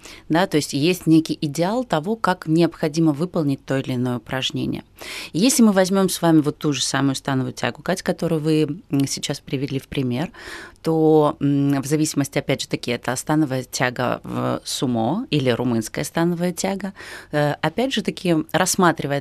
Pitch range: 140-170 Hz